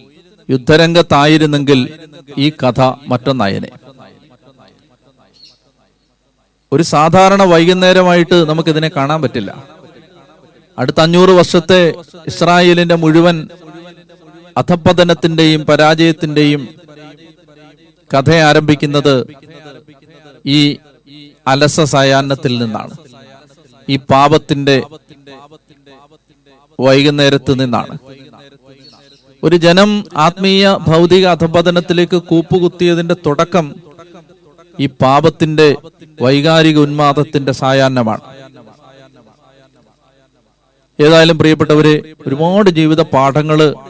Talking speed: 60 wpm